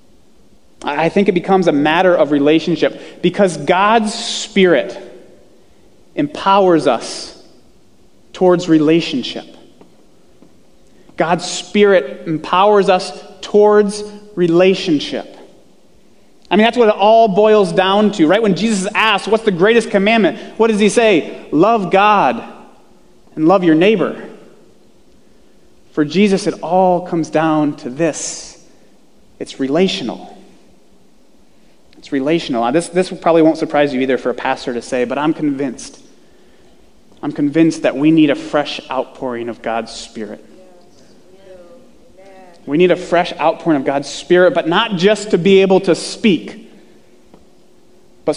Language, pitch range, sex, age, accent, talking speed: English, 155-200 Hz, male, 30-49, American, 130 wpm